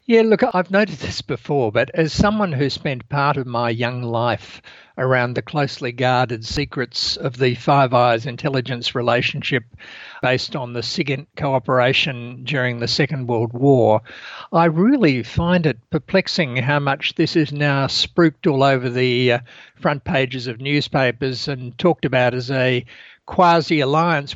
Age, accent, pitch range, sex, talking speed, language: 60-79, Australian, 125-160 Hz, male, 150 wpm, English